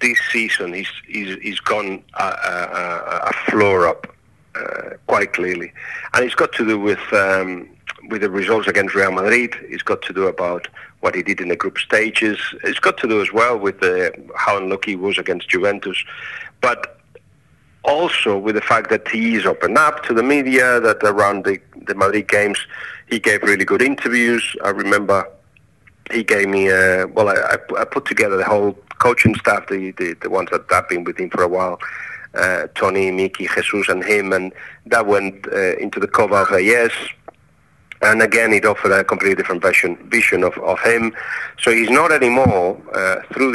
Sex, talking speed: male, 185 wpm